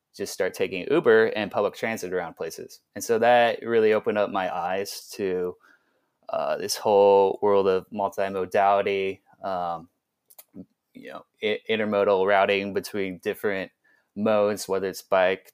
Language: English